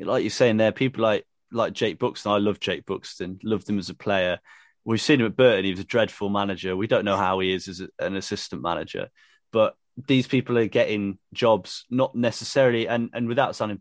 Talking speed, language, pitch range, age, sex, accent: 220 wpm, English, 100-115 Hz, 30-49, male, British